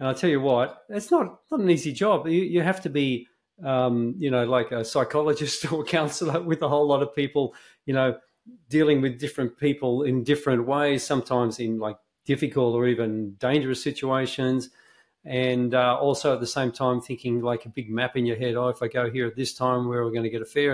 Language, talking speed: English, 225 wpm